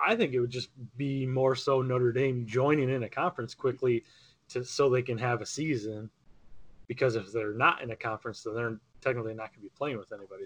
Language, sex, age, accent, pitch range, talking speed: English, male, 20-39, American, 115-140 Hz, 225 wpm